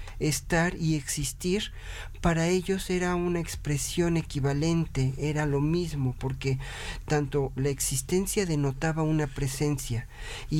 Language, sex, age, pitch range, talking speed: Spanish, male, 40-59, 130-165 Hz, 115 wpm